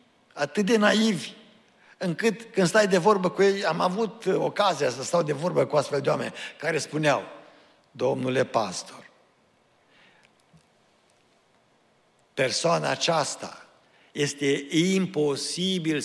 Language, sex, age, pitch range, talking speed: Romanian, male, 60-79, 150-190 Hz, 110 wpm